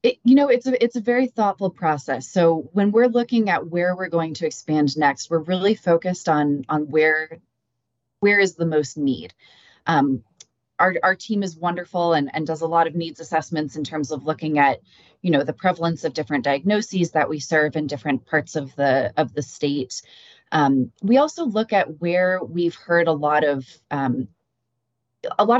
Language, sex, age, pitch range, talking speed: English, female, 20-39, 150-185 Hz, 195 wpm